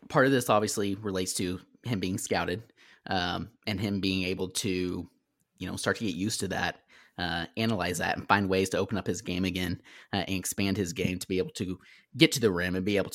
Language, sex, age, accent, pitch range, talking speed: English, male, 30-49, American, 95-120 Hz, 235 wpm